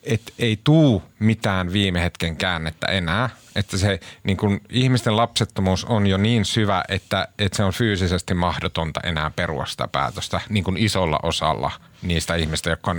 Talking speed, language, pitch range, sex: 160 wpm, Finnish, 85-110 Hz, male